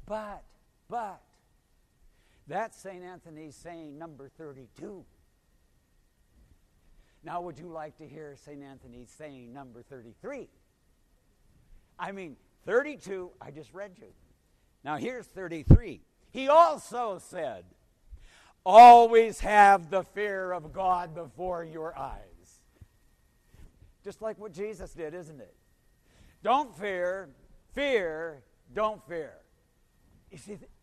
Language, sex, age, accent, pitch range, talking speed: English, male, 60-79, American, 140-205 Hz, 105 wpm